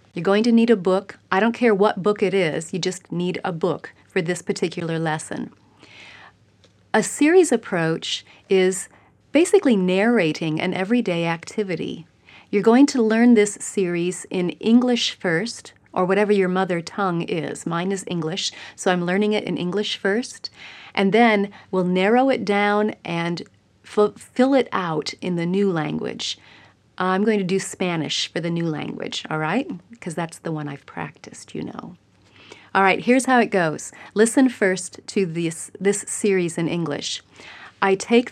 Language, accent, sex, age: English, American, female, 40-59